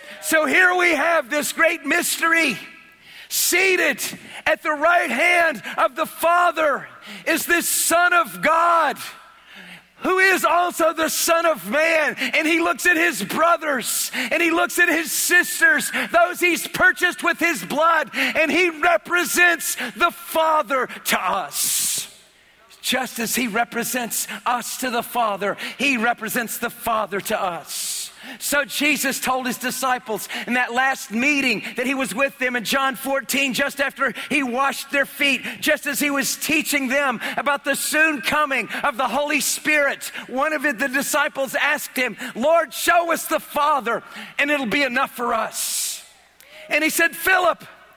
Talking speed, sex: 155 wpm, male